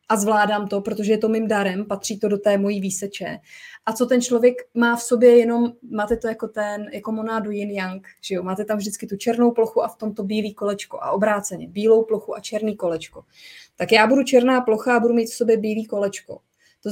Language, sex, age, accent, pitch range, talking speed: Czech, female, 20-39, native, 205-235 Hz, 220 wpm